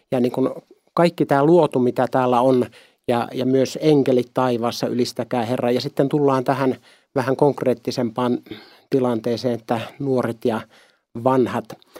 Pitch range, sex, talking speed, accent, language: 125-150 Hz, male, 135 wpm, native, Finnish